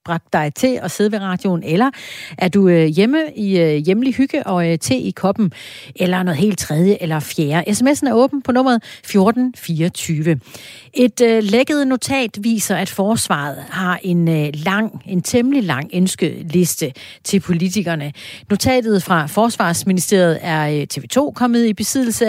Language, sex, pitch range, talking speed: Danish, female, 165-225 Hz, 135 wpm